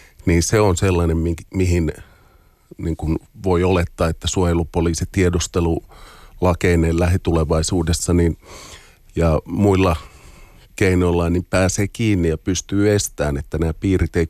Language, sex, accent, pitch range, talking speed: Finnish, male, native, 85-95 Hz, 105 wpm